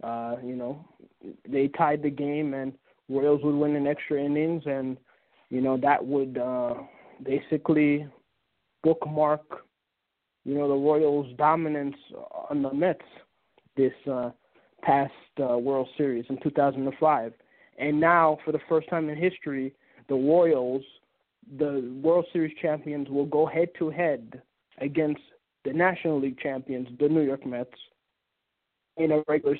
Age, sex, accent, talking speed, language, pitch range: 20-39, male, American, 145 wpm, English, 135-160 Hz